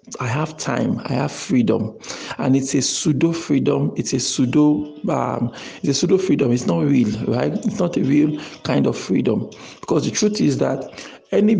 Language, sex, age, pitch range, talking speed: English, male, 50-69, 125-165 Hz, 185 wpm